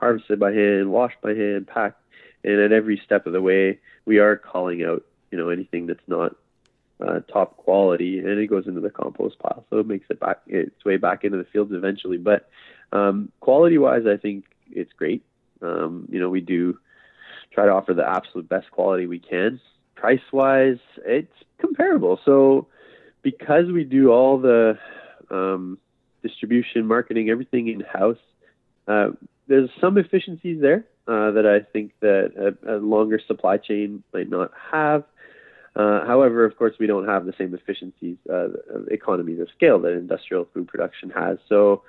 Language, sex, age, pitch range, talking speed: English, male, 20-39, 95-120 Hz, 175 wpm